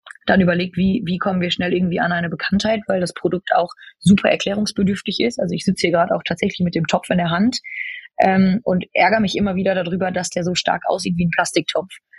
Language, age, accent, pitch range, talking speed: German, 20-39, German, 175-200 Hz, 225 wpm